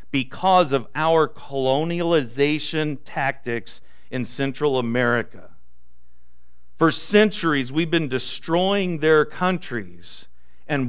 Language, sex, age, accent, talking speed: English, male, 50-69, American, 90 wpm